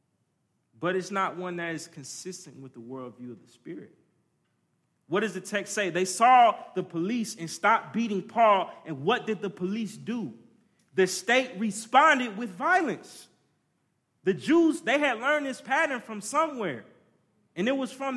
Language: English